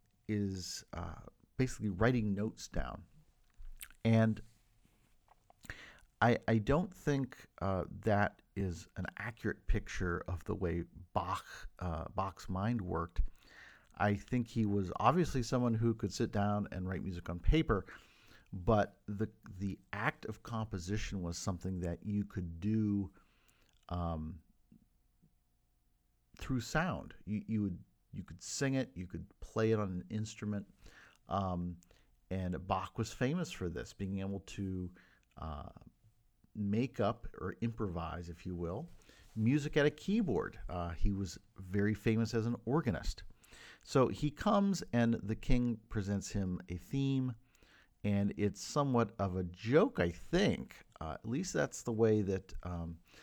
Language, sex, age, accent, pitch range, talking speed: English, male, 50-69, American, 90-115 Hz, 140 wpm